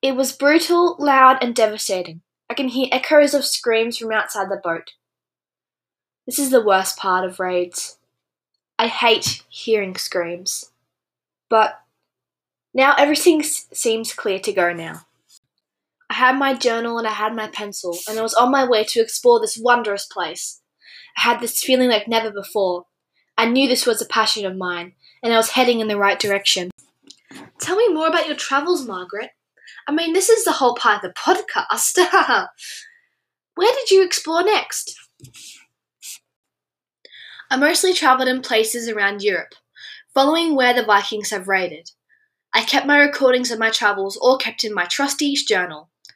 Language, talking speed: English, 165 wpm